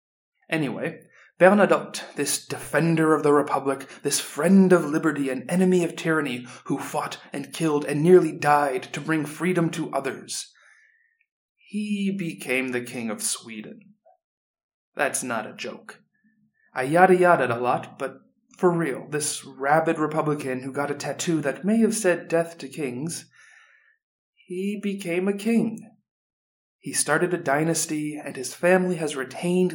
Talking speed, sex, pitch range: 145 wpm, male, 135-185 Hz